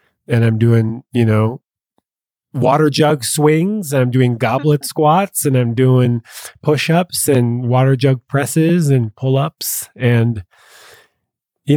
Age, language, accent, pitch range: 30-49, English, American, 100-130 Hz